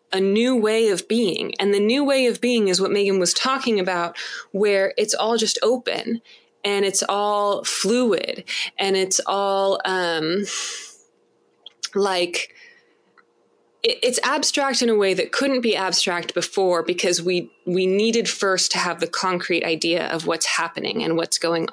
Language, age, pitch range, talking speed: English, 20-39, 185-250 Hz, 155 wpm